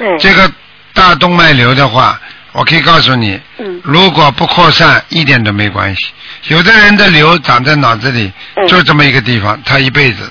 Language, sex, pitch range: Chinese, male, 130-185 Hz